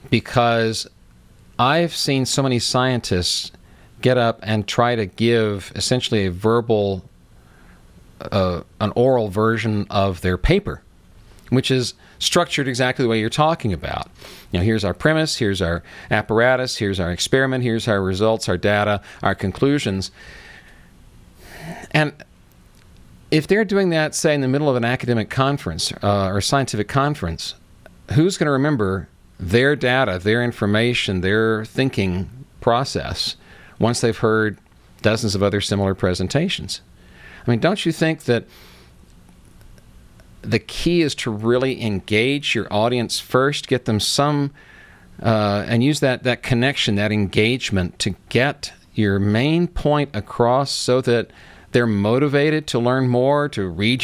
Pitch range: 100-130 Hz